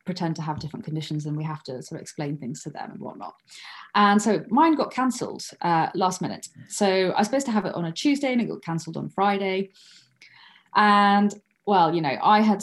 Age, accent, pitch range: 30-49, British, 165-210 Hz